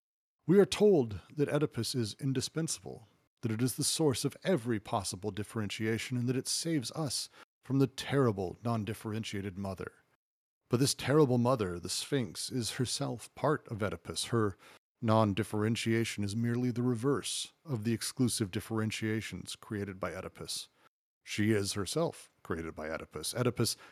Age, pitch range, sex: 40-59, 105-130 Hz, male